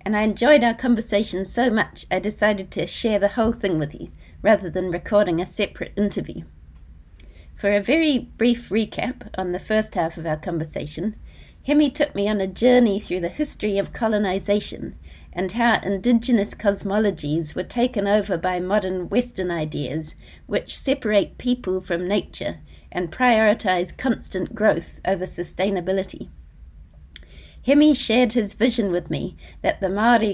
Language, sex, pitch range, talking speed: English, female, 175-225 Hz, 150 wpm